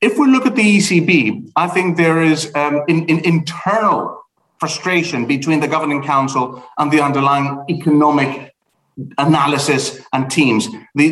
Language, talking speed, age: English, 150 wpm, 40-59